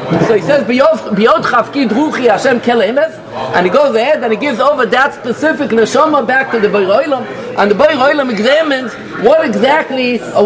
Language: English